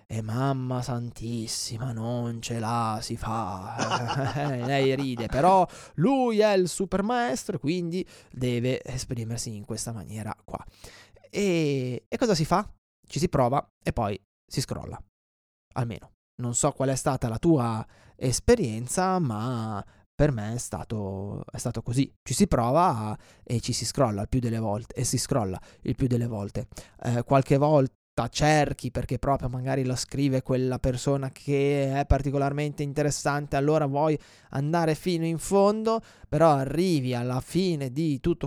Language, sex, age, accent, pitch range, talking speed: Italian, male, 20-39, native, 115-155 Hz, 150 wpm